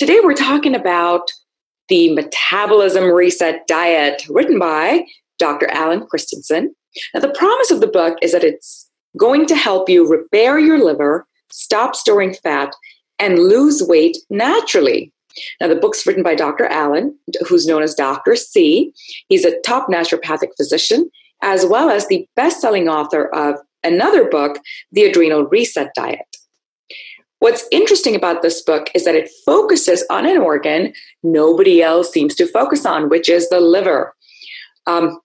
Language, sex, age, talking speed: English, female, 30-49, 150 wpm